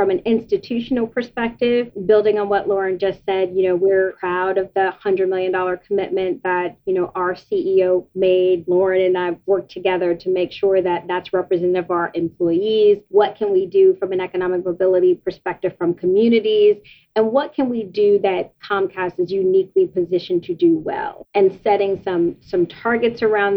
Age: 30-49